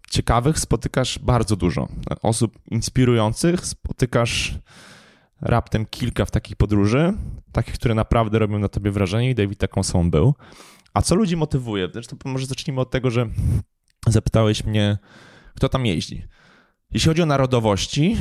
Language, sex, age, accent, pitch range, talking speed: Polish, male, 20-39, native, 100-130 Hz, 145 wpm